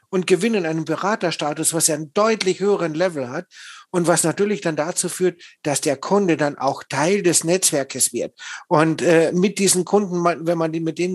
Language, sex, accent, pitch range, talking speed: German, male, German, 140-165 Hz, 190 wpm